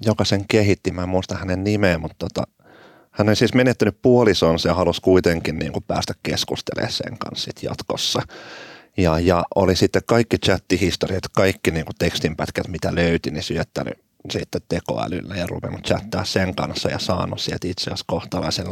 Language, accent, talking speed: Finnish, native, 165 wpm